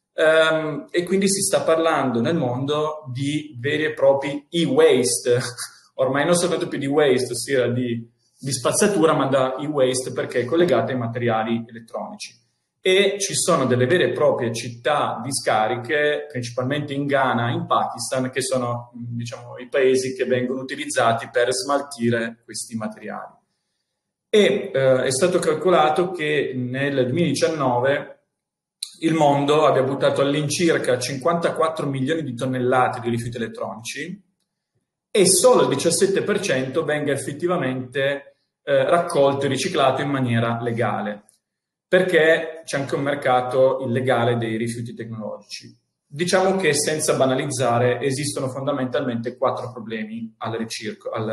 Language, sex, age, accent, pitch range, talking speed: Italian, male, 30-49, native, 120-160 Hz, 125 wpm